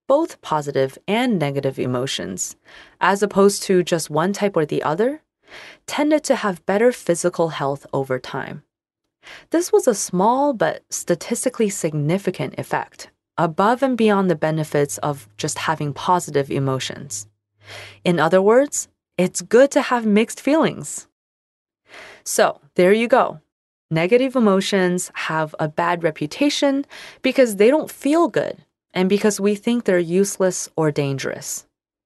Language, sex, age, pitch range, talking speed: English, female, 20-39, 155-230 Hz, 135 wpm